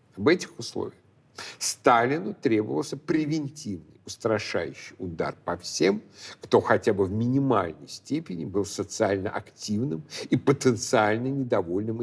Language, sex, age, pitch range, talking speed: Russian, male, 60-79, 105-135 Hz, 110 wpm